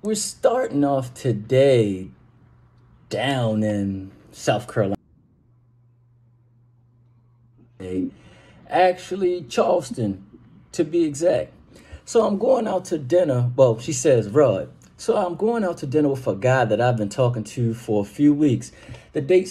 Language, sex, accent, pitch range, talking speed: English, male, American, 115-155 Hz, 130 wpm